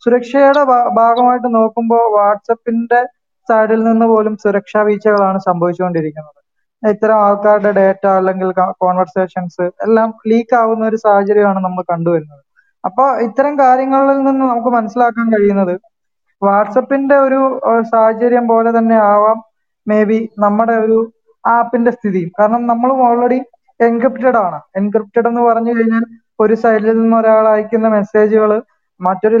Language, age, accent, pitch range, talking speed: Malayalam, 20-39, native, 205-240 Hz, 120 wpm